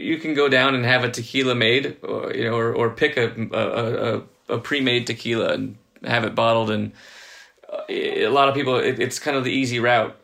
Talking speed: 200 wpm